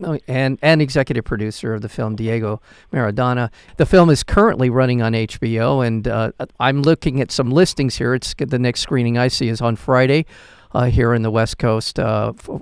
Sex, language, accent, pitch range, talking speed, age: male, English, American, 115-150 Hz, 190 wpm, 50-69